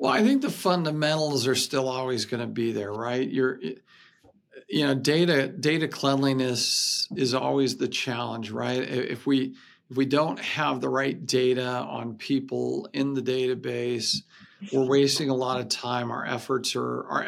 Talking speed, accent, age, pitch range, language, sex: 165 wpm, American, 50-69, 125-150 Hz, English, male